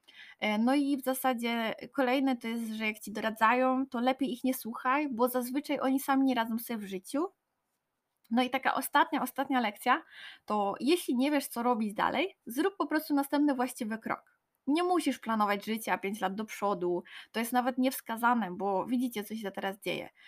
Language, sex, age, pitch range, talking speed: Polish, female, 20-39, 230-290 Hz, 185 wpm